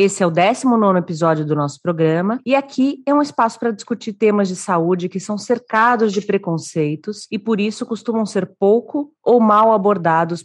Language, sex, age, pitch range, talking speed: Portuguese, female, 40-59, 170-220 Hz, 185 wpm